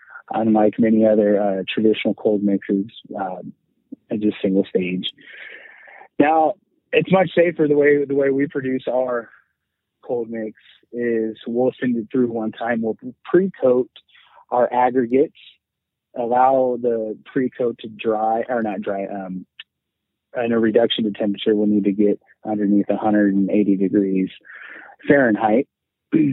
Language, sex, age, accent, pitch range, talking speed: English, male, 30-49, American, 105-125 Hz, 135 wpm